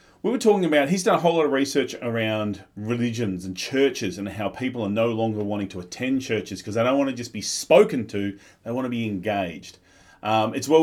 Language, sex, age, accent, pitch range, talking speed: English, male, 30-49, Australian, 100-145 Hz, 235 wpm